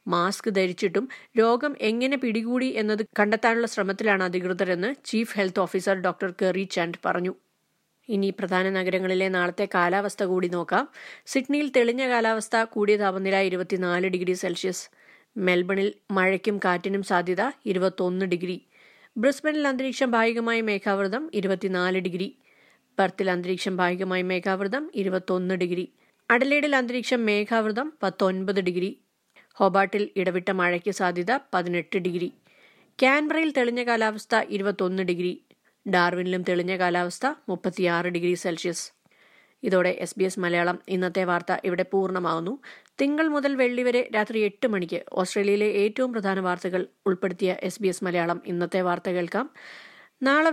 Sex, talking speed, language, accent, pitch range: female, 115 wpm, Malayalam, native, 185-225 Hz